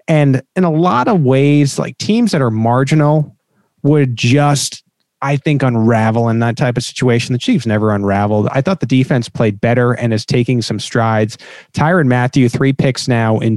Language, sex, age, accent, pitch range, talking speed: English, male, 30-49, American, 120-160 Hz, 185 wpm